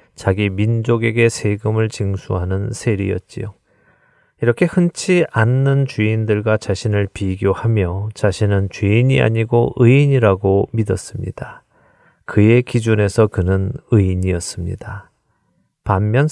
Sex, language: male, Korean